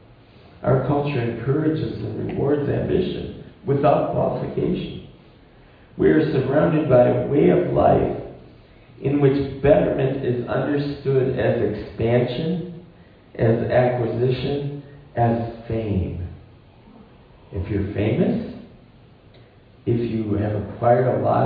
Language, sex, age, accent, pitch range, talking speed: English, male, 50-69, American, 110-150 Hz, 100 wpm